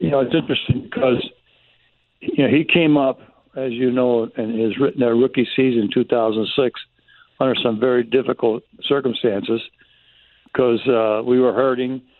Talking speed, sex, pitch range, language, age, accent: 150 wpm, male, 120-140 Hz, English, 60-79, American